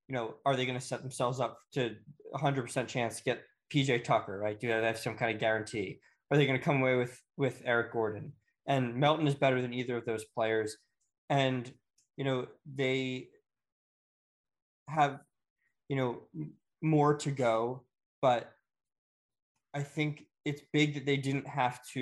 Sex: male